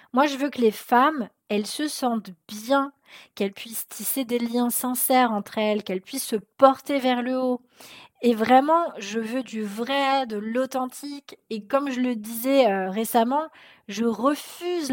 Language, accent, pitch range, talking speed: French, French, 215-255 Hz, 165 wpm